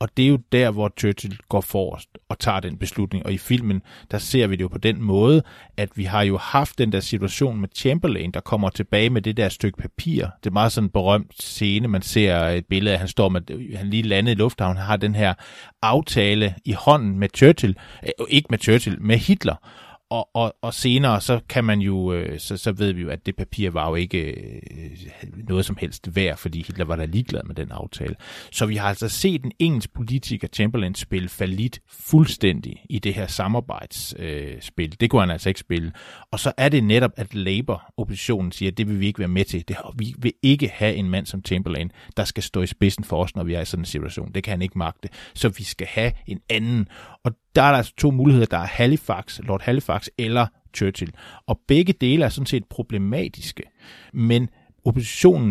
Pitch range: 95-120 Hz